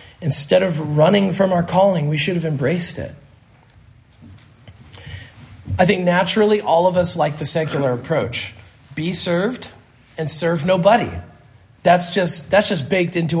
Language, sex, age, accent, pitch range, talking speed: English, male, 40-59, American, 145-210 Hz, 145 wpm